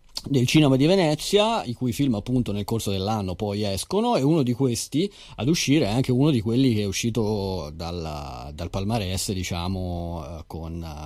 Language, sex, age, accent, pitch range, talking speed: Italian, male, 30-49, native, 95-120 Hz, 175 wpm